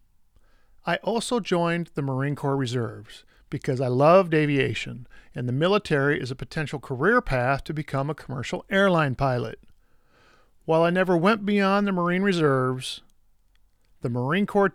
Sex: male